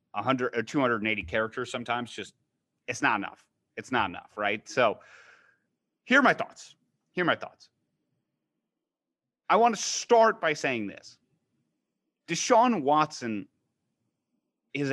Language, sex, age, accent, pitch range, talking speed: English, male, 30-49, American, 115-150 Hz, 130 wpm